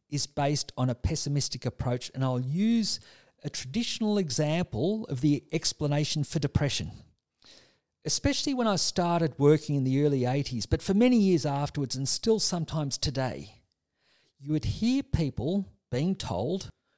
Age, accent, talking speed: 50-69, Australian, 145 wpm